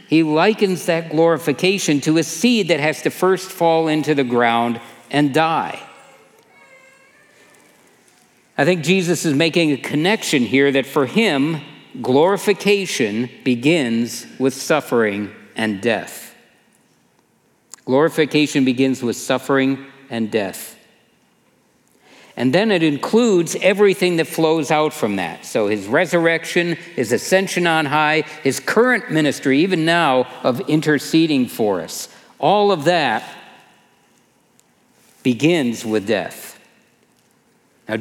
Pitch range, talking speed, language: 135-180 Hz, 115 wpm, English